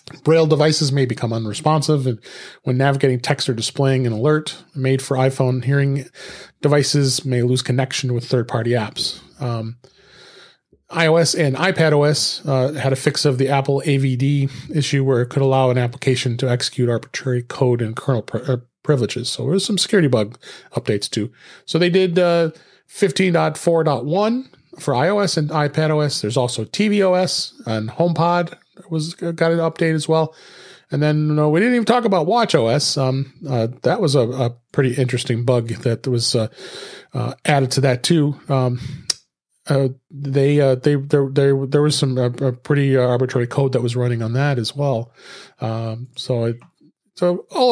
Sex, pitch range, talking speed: male, 125-160 Hz, 165 wpm